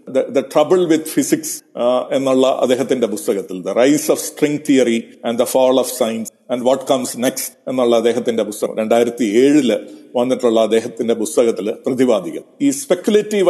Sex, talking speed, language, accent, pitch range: male, 140 wpm, Malayalam, native, 125-170 Hz